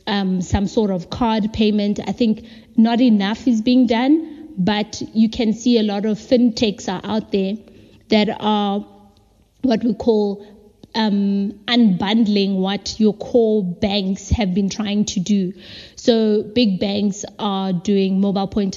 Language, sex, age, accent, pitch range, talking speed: English, female, 20-39, South African, 200-225 Hz, 150 wpm